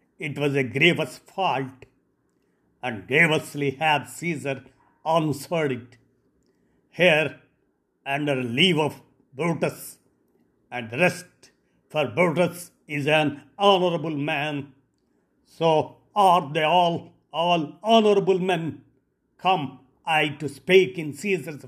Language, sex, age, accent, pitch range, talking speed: Telugu, male, 50-69, native, 130-175 Hz, 100 wpm